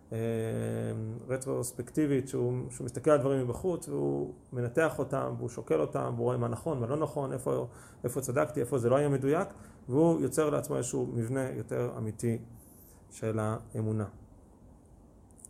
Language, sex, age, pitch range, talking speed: Hebrew, male, 40-59, 115-145 Hz, 145 wpm